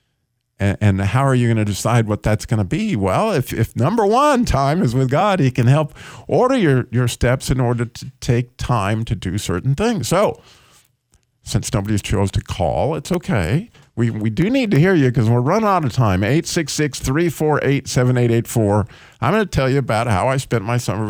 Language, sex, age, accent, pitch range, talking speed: English, male, 50-69, American, 110-140 Hz, 200 wpm